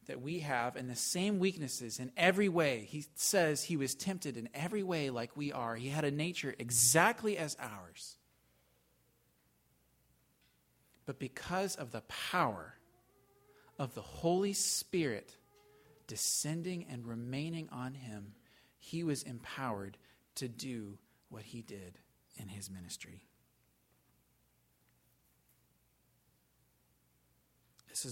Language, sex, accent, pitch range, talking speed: English, male, American, 115-160 Hz, 115 wpm